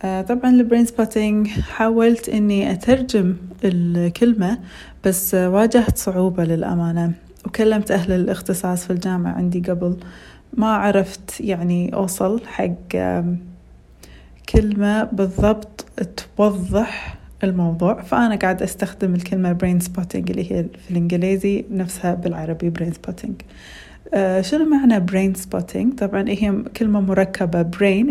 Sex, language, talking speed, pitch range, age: female, Arabic, 105 wpm, 180-220 Hz, 30-49